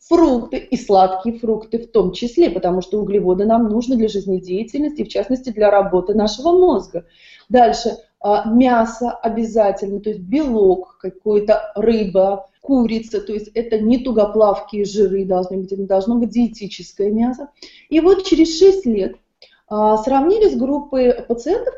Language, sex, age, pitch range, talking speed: Russian, female, 20-39, 200-280 Hz, 140 wpm